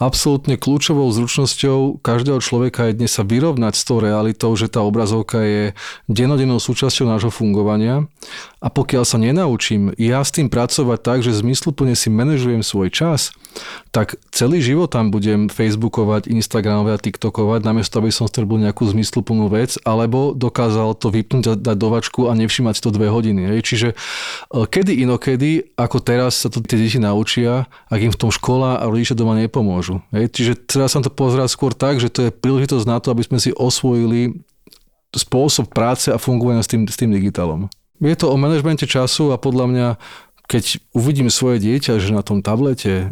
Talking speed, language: 170 wpm, Slovak